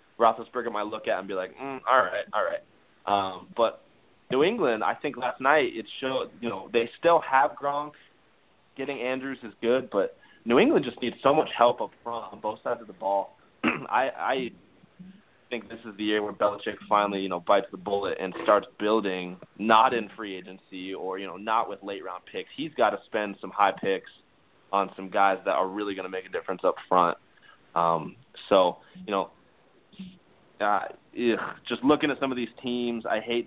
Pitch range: 100-115 Hz